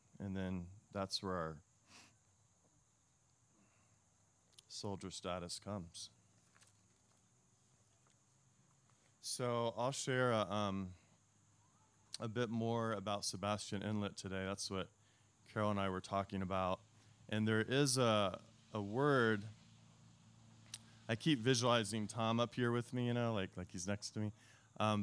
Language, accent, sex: English, American, male